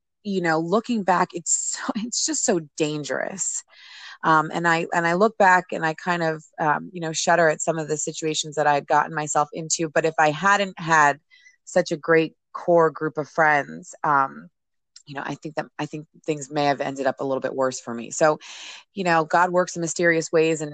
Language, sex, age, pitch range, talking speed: English, female, 30-49, 155-195 Hz, 215 wpm